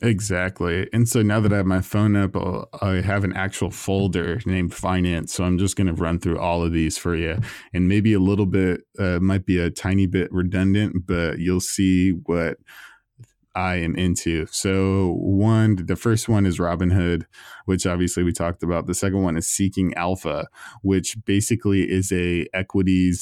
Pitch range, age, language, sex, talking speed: 85-100 Hz, 20-39, English, male, 185 wpm